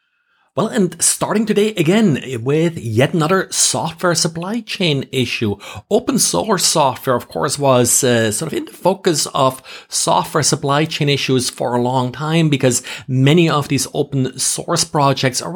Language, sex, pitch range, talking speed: English, male, 120-160 Hz, 160 wpm